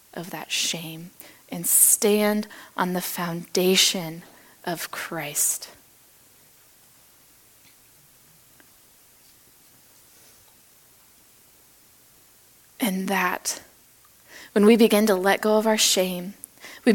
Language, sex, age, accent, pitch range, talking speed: English, female, 20-39, American, 195-230 Hz, 80 wpm